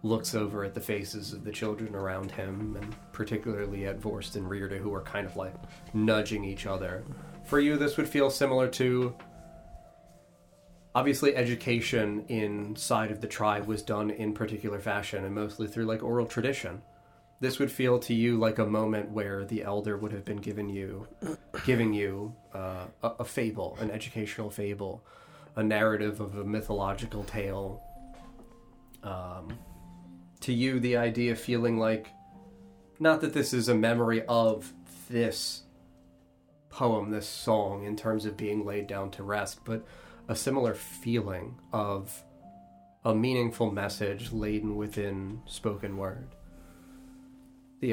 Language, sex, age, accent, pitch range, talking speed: English, male, 30-49, American, 100-115 Hz, 150 wpm